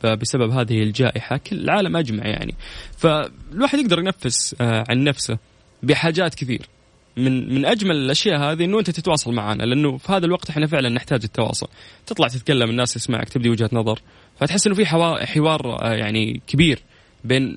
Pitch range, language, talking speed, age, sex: 120-155 Hz, Arabic, 155 wpm, 20-39, male